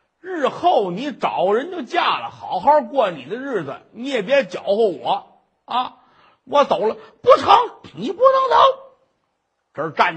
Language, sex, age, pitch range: Chinese, male, 50-69, 190-295 Hz